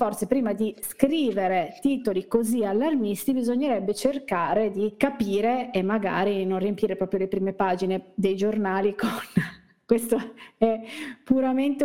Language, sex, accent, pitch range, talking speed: Italian, female, native, 195-230 Hz, 125 wpm